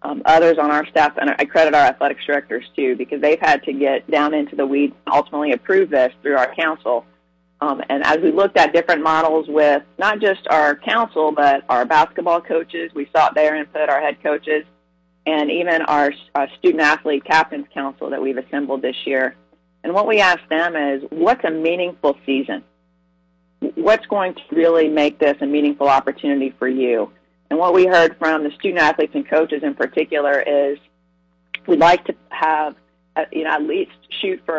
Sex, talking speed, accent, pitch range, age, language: female, 185 wpm, American, 140-160 Hz, 30-49, English